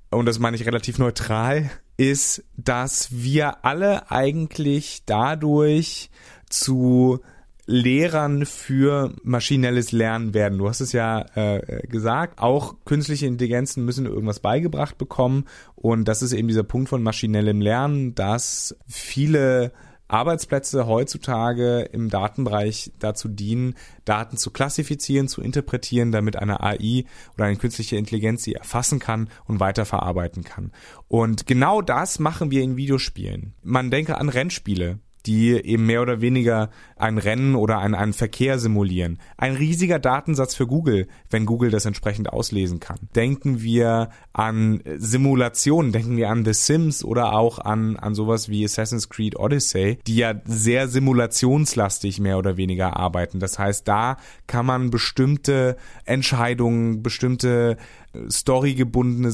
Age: 30-49